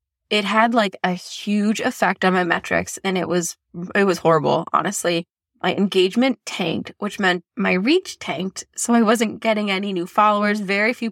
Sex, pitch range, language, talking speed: female, 175-215 Hz, English, 180 wpm